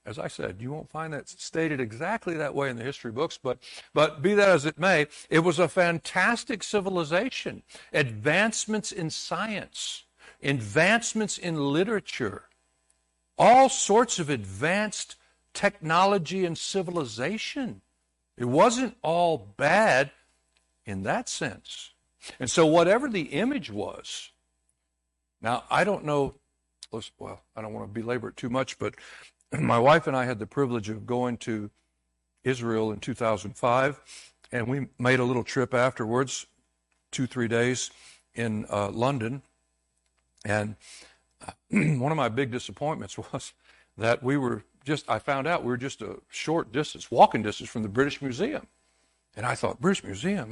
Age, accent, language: 60-79, American, English